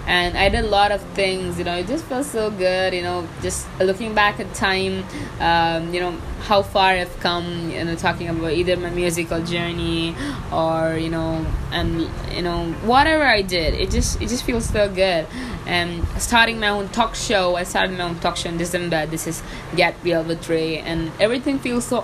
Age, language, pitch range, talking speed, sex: 20-39, English, 165-205 Hz, 205 wpm, female